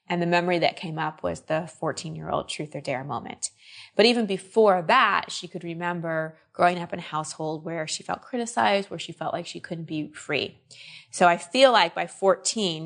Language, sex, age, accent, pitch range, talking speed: English, female, 20-39, American, 165-230 Hz, 200 wpm